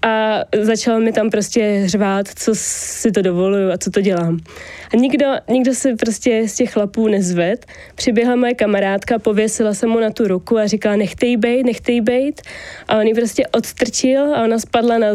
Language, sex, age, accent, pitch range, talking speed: Czech, female, 20-39, native, 205-245 Hz, 185 wpm